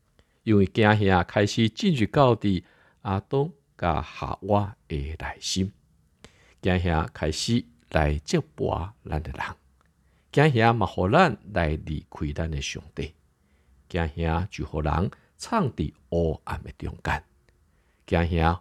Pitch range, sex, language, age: 75-105 Hz, male, Chinese, 50-69